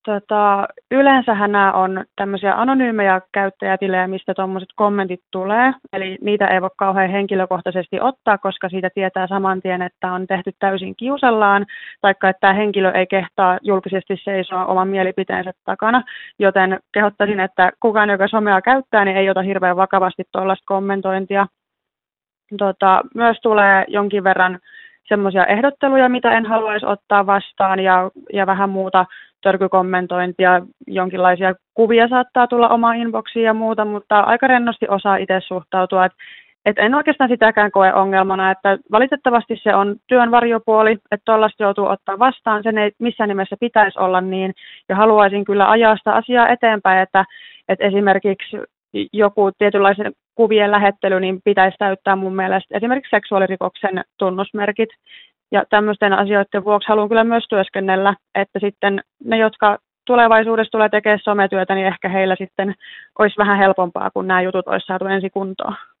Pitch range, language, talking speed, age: 190-215 Hz, Finnish, 145 wpm, 20-39